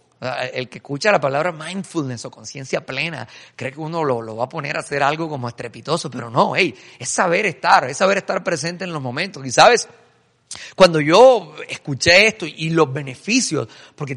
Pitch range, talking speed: 140-195 Hz, 185 wpm